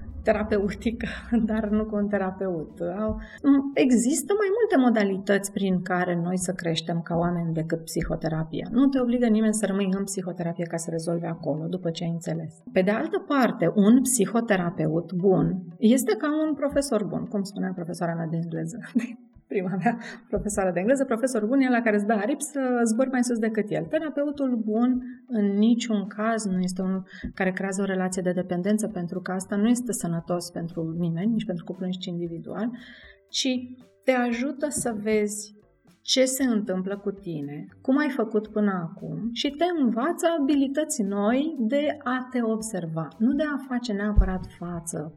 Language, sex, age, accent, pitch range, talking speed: Romanian, female, 30-49, native, 180-240 Hz, 170 wpm